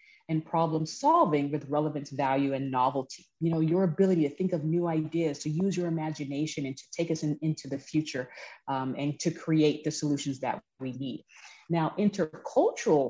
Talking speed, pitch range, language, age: 185 wpm, 140-180 Hz, English, 30-49